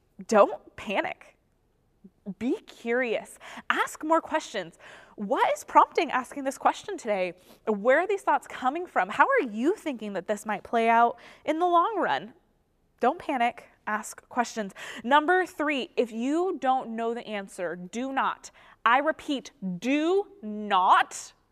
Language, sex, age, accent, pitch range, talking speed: English, female, 20-39, American, 195-275 Hz, 140 wpm